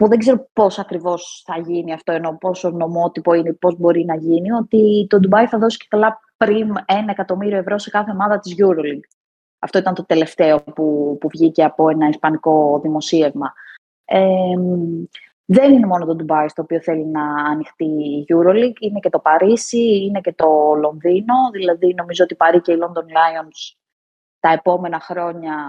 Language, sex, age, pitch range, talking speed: Greek, female, 20-39, 155-190 Hz, 180 wpm